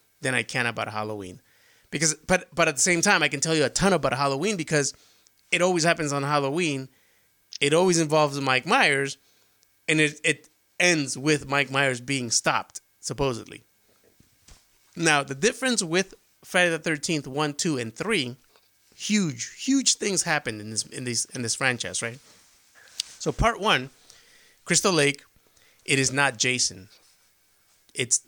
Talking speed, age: 155 wpm, 30-49